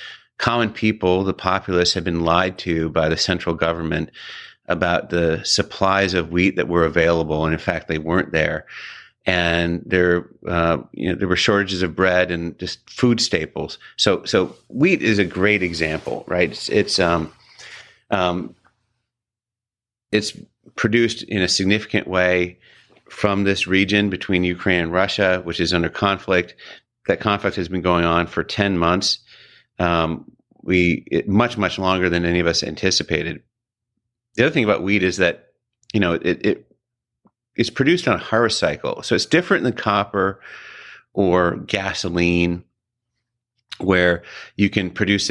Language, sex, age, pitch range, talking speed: English, male, 30-49, 85-105 Hz, 155 wpm